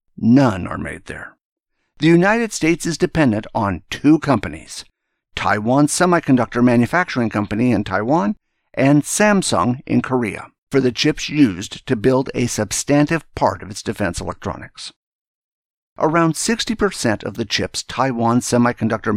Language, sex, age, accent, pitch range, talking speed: English, male, 50-69, American, 110-155 Hz, 130 wpm